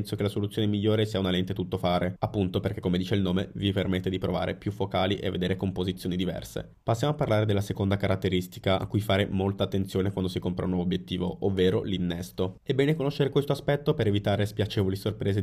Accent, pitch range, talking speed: native, 90-105 Hz, 210 wpm